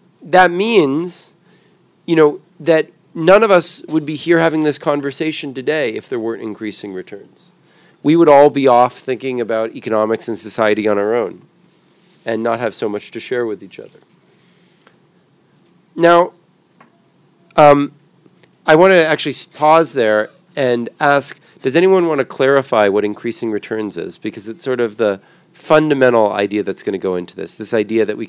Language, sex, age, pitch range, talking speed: Portuguese, male, 40-59, 115-170 Hz, 170 wpm